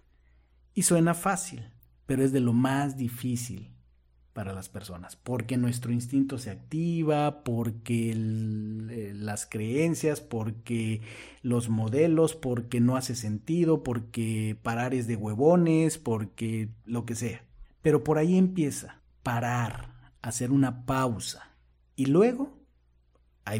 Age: 50-69